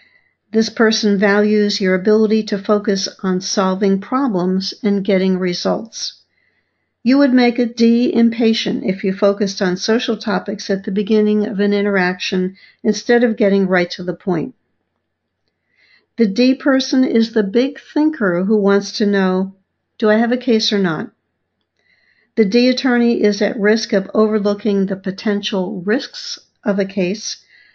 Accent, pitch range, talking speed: American, 195-235 Hz, 150 wpm